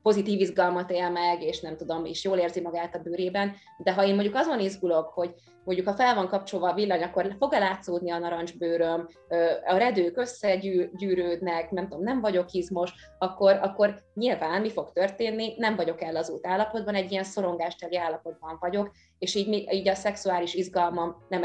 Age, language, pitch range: 20-39, Hungarian, 175-200 Hz